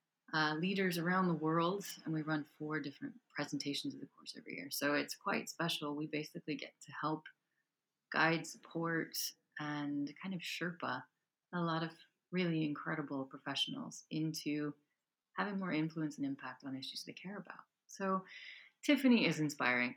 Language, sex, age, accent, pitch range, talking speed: English, female, 30-49, American, 150-185 Hz, 155 wpm